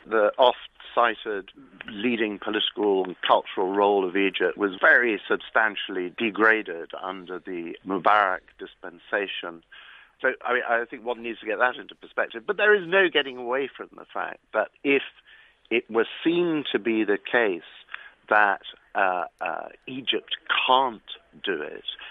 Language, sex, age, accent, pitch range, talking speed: English, male, 50-69, British, 105-165 Hz, 145 wpm